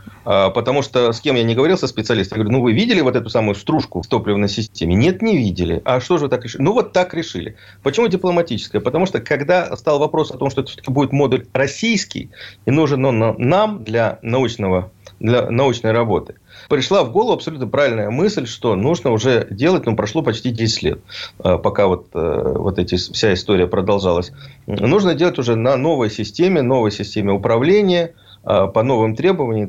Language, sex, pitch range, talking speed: Russian, male, 105-145 Hz, 185 wpm